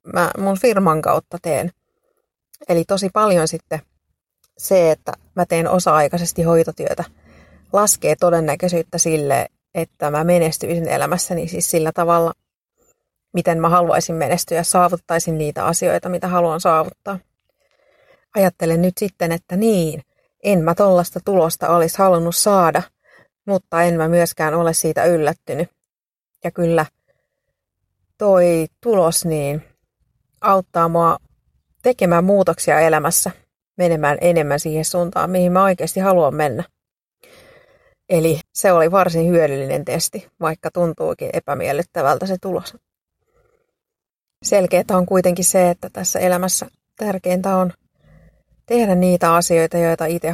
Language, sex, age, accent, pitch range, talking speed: Finnish, female, 30-49, native, 165-185 Hz, 115 wpm